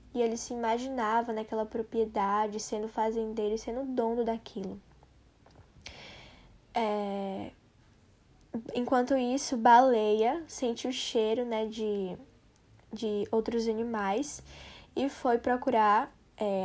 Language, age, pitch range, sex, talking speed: Portuguese, 10-29, 220-255 Hz, female, 100 wpm